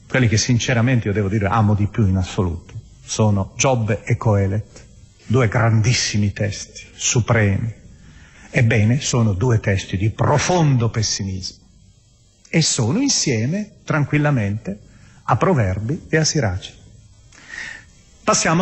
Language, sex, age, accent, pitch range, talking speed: Italian, male, 40-59, native, 110-170 Hz, 115 wpm